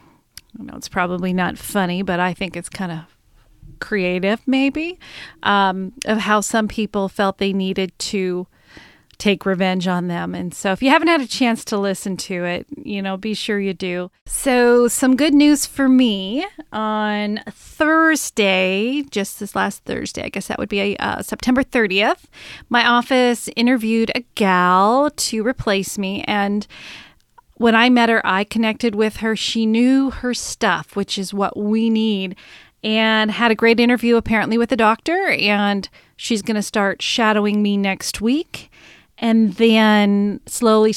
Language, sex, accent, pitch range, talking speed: English, female, American, 195-240 Hz, 165 wpm